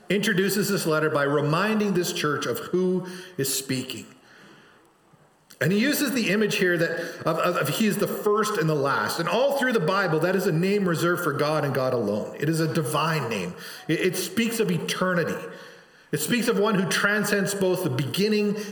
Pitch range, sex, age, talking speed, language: 150-205 Hz, male, 40-59, 200 wpm, English